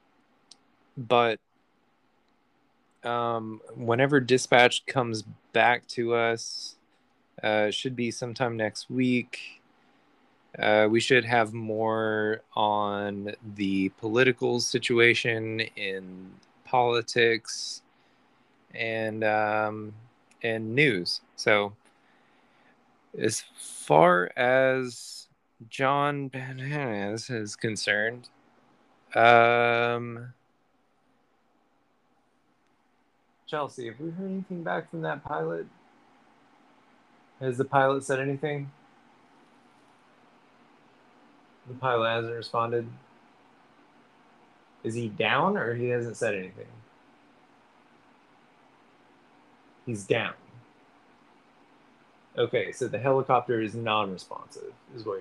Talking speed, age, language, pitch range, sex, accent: 80 wpm, 20-39, English, 110-165 Hz, male, American